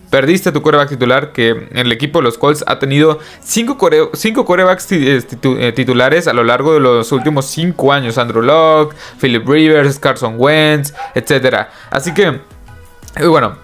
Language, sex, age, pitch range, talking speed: Spanish, male, 20-39, 130-165 Hz, 170 wpm